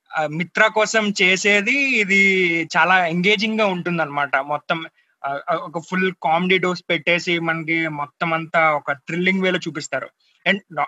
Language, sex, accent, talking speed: Telugu, male, native, 125 wpm